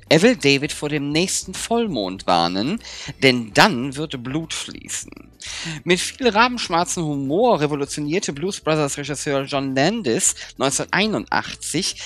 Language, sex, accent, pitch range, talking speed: German, male, German, 135-200 Hz, 120 wpm